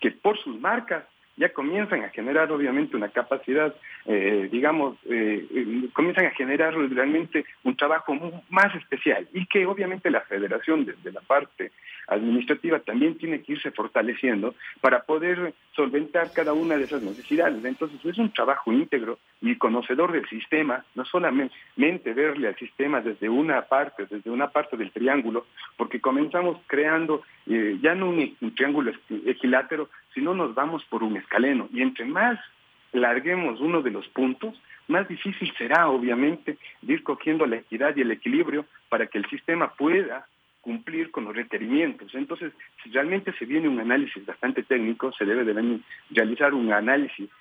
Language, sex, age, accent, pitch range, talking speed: Spanish, male, 50-69, Mexican, 130-195 Hz, 160 wpm